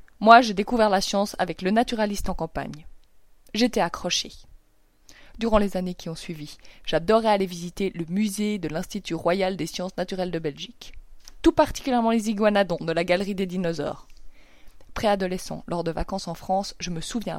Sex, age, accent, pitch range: female, 20-39, French, 175-225 Hz